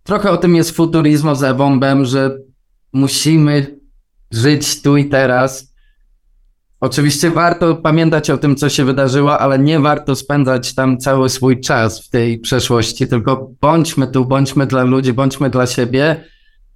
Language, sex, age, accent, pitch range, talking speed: Polish, male, 20-39, native, 130-145 Hz, 145 wpm